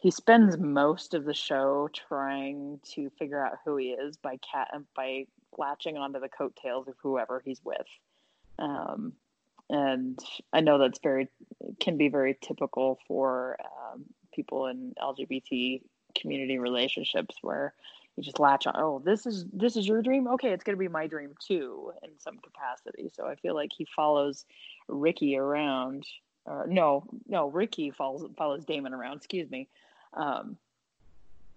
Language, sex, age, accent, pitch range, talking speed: English, female, 20-39, American, 135-180 Hz, 155 wpm